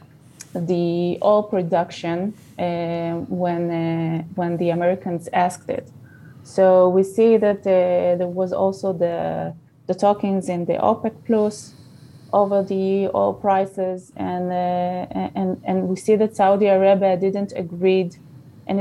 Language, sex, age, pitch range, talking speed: English, female, 20-39, 175-195 Hz, 135 wpm